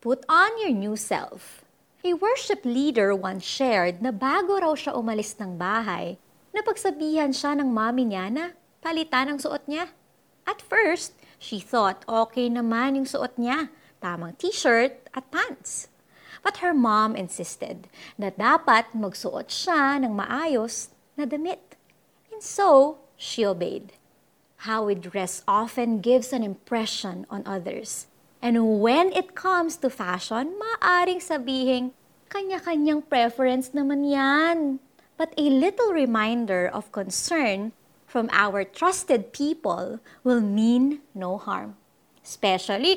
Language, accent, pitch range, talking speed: Filipino, native, 210-305 Hz, 130 wpm